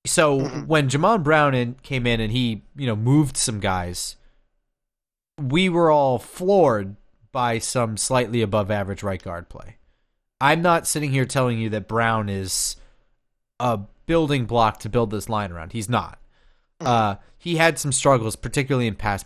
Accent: American